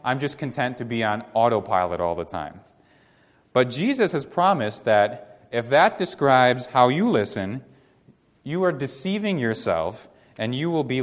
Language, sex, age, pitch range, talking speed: English, male, 30-49, 105-135 Hz, 160 wpm